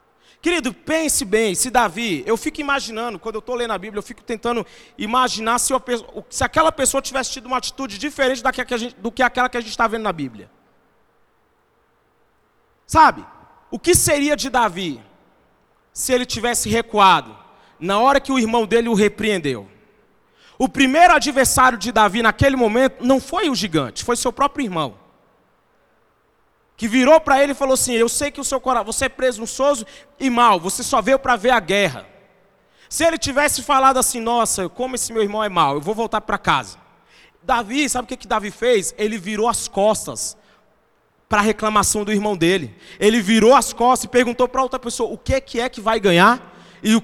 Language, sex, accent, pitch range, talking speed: Portuguese, male, Brazilian, 215-260 Hz, 195 wpm